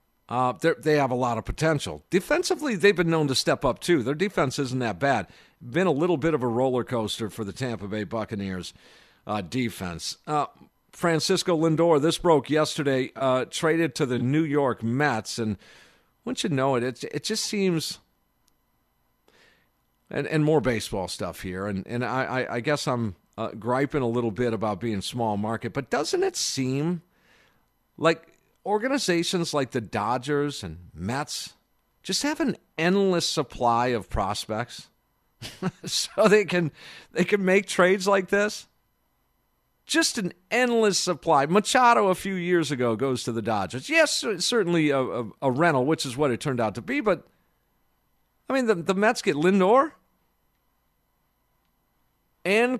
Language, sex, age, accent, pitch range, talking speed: English, male, 50-69, American, 120-185 Hz, 165 wpm